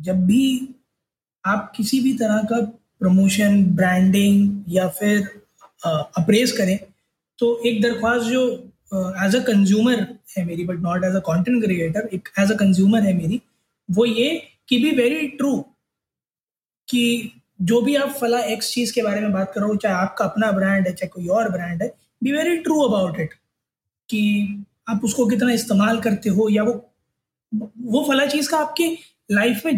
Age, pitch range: 20-39, 195-245 Hz